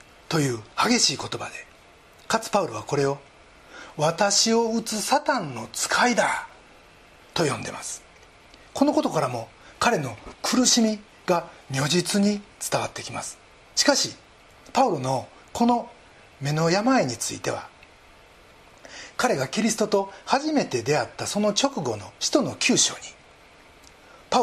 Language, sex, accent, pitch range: Japanese, male, native, 140-230 Hz